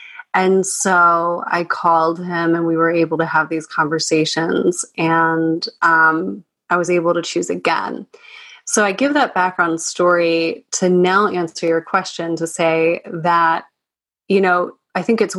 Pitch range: 165-195 Hz